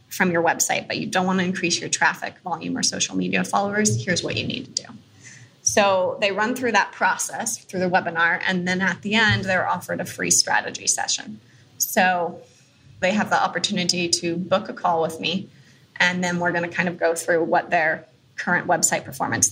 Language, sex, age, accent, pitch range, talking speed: English, female, 20-39, American, 170-200 Hz, 205 wpm